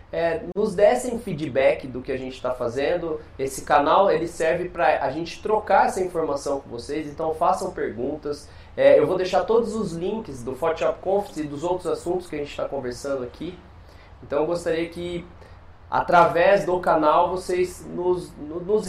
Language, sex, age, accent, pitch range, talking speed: Portuguese, male, 20-39, Brazilian, 145-190 Hz, 165 wpm